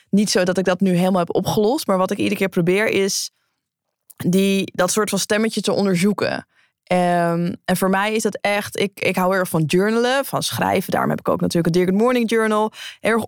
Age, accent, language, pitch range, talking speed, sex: 20-39, Dutch, Dutch, 180-220 Hz, 210 wpm, female